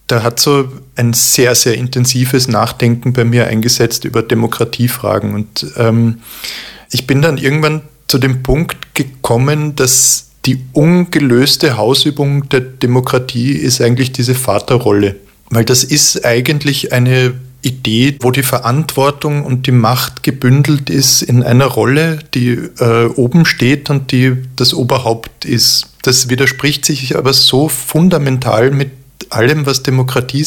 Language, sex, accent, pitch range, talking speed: German, male, German, 120-140 Hz, 135 wpm